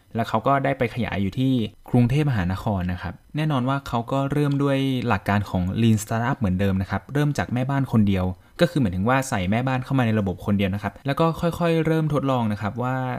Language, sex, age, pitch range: Thai, male, 20-39, 100-130 Hz